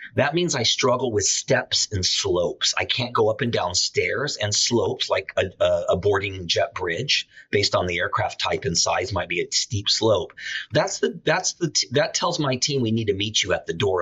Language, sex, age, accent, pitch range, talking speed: English, male, 40-59, American, 105-150 Hz, 220 wpm